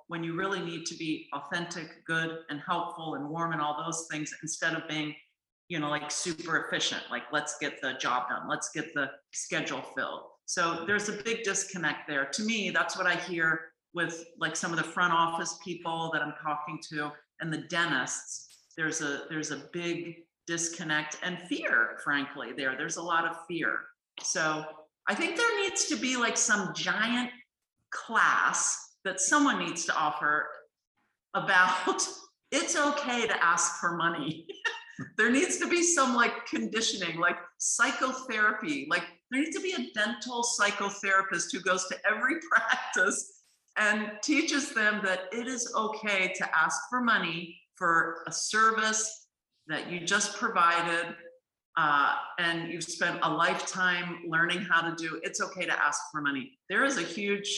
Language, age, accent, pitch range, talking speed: English, 50-69, American, 165-220 Hz, 165 wpm